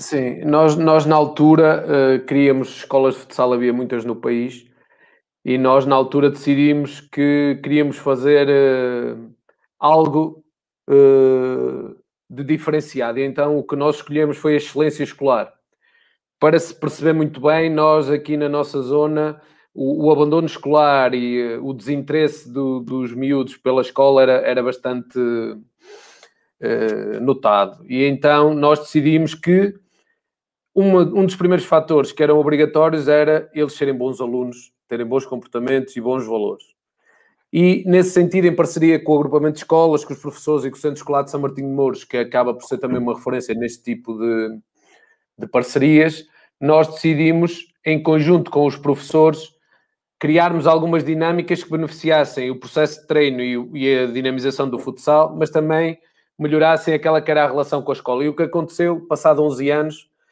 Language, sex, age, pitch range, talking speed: Portuguese, male, 20-39, 130-155 Hz, 155 wpm